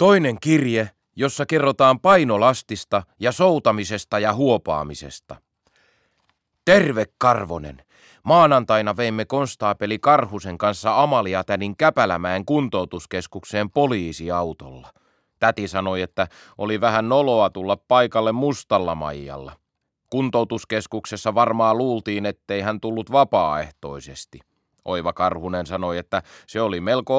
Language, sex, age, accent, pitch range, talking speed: Finnish, male, 30-49, native, 95-125 Hz, 100 wpm